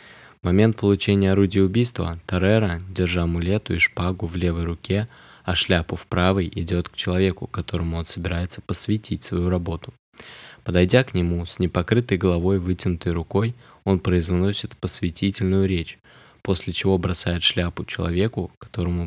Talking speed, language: 140 wpm, Russian